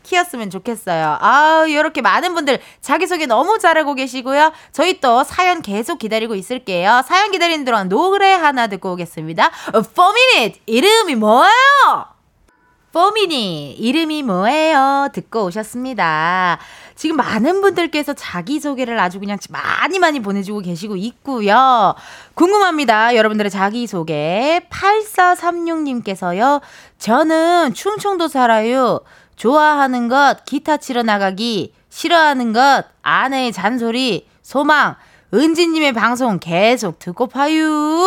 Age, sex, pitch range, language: 20-39, female, 220-330 Hz, Korean